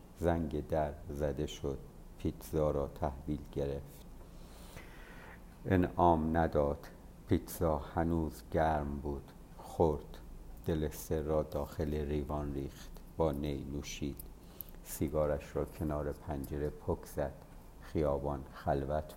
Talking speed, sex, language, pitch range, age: 95 wpm, male, Persian, 75-85 Hz, 50-69